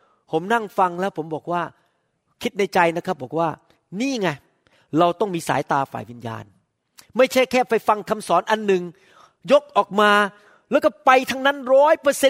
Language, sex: Thai, male